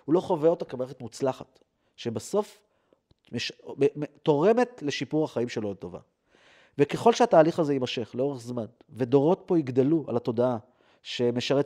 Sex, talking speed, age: male, 130 wpm, 30-49